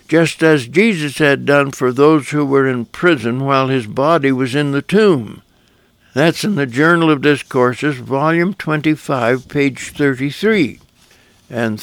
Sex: male